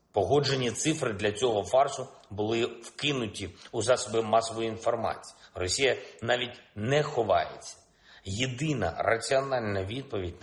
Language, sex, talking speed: Polish, male, 105 wpm